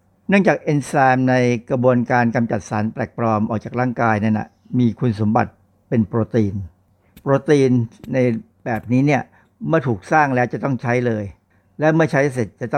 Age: 60-79